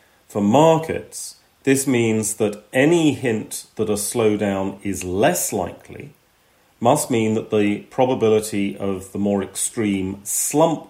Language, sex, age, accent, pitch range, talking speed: English, male, 40-59, British, 95-120 Hz, 125 wpm